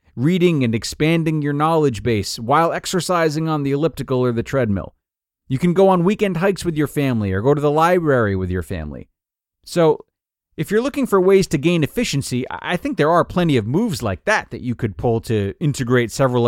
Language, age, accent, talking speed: English, 30-49, American, 205 wpm